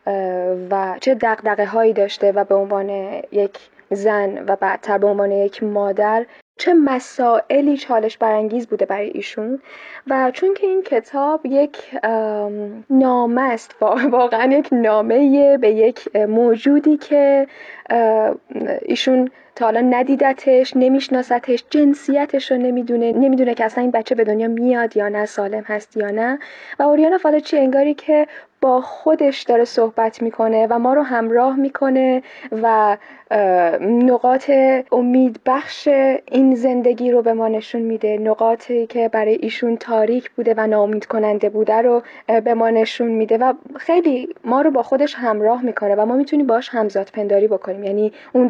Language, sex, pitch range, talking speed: Persian, female, 215-265 Hz, 145 wpm